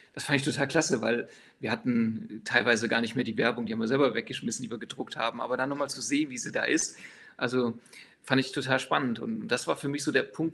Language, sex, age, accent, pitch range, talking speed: German, male, 40-59, German, 130-180 Hz, 255 wpm